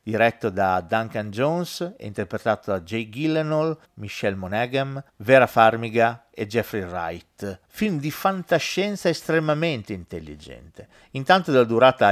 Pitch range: 105-150 Hz